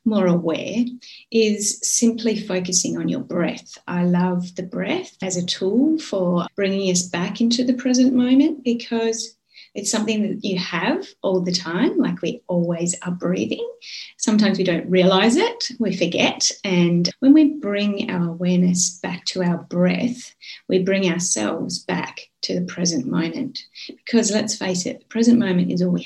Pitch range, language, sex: 180-240 Hz, English, female